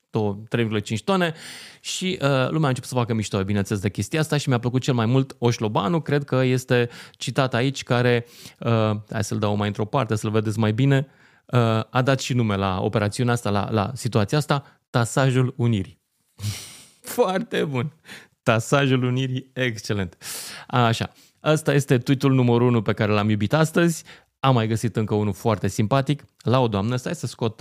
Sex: male